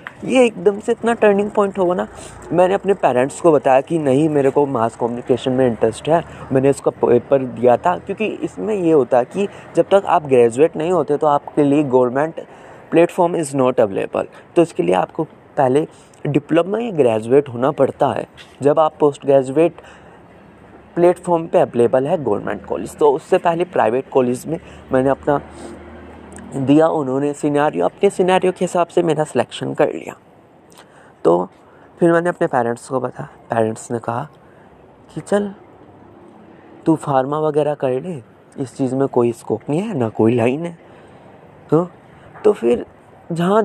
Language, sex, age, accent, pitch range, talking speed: Hindi, male, 20-39, native, 125-170 Hz, 165 wpm